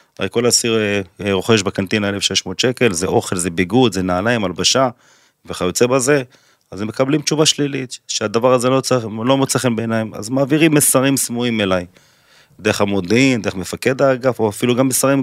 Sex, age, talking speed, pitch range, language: male, 30-49, 165 wpm, 95-125 Hz, Hebrew